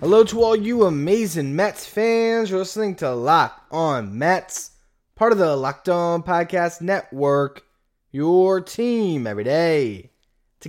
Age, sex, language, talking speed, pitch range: 20-39, male, English, 140 wpm, 140-180 Hz